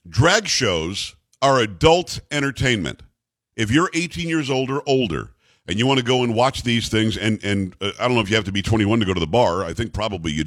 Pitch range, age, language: 115-150 Hz, 50-69, English